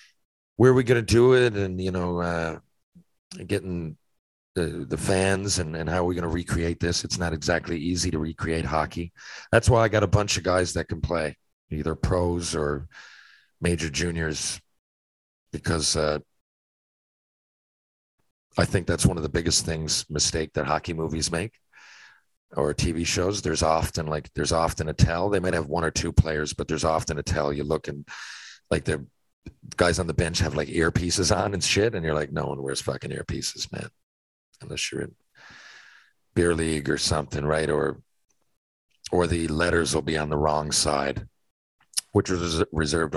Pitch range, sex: 80-95 Hz, male